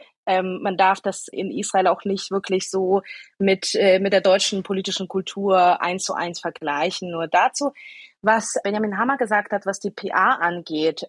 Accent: German